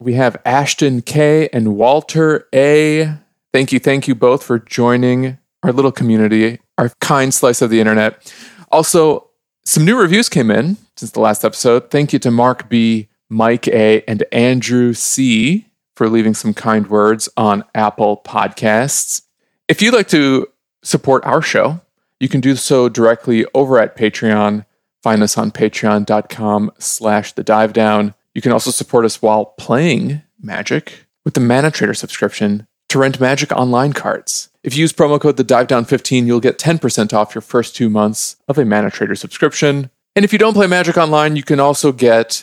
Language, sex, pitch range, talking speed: English, male, 110-145 Hz, 170 wpm